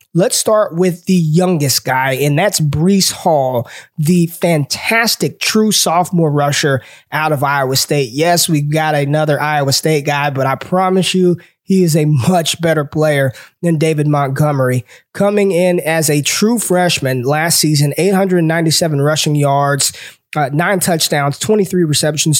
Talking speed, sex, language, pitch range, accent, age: 145 wpm, male, English, 145-185 Hz, American, 20-39